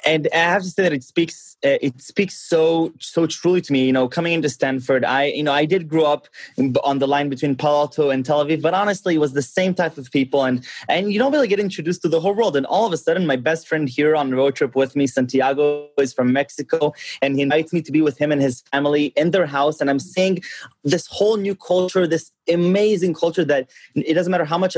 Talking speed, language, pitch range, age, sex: 255 wpm, English, 135-165 Hz, 20-39, male